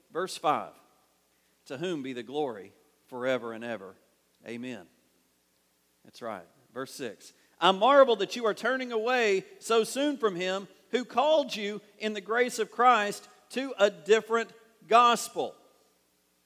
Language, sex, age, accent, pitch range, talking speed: English, male, 40-59, American, 180-235 Hz, 140 wpm